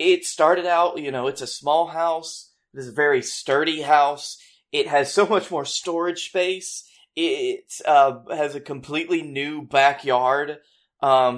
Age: 20-39